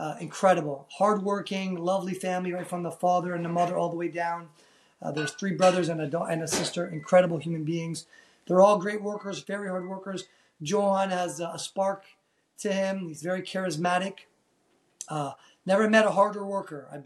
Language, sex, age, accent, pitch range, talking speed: English, male, 30-49, American, 175-200 Hz, 180 wpm